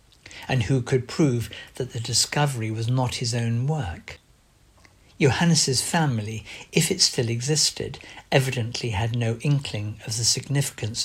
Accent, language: British, English